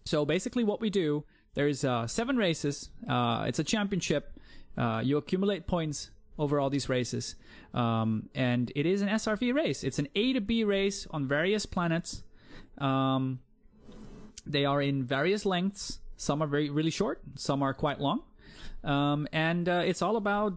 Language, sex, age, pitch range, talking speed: English, male, 20-39, 145-190 Hz, 170 wpm